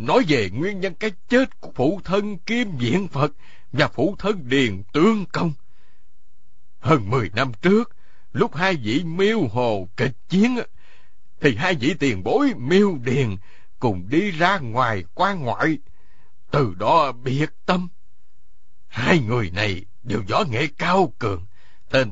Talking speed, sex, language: 150 wpm, male, Vietnamese